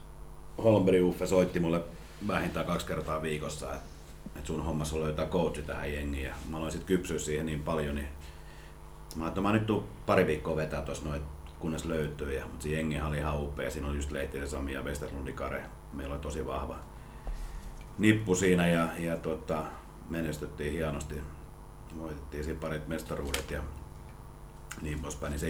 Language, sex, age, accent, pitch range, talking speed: Finnish, male, 40-59, native, 70-80 Hz, 165 wpm